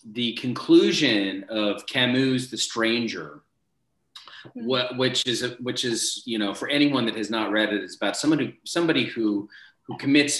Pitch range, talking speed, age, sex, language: 110-140 Hz, 155 wpm, 30-49, male, English